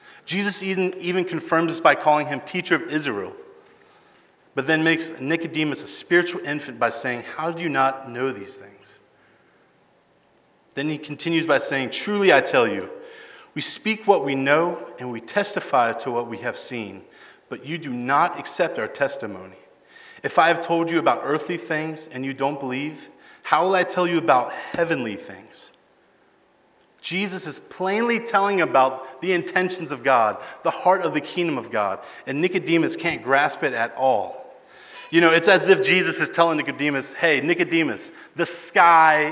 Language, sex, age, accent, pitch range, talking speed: English, male, 30-49, American, 140-190 Hz, 170 wpm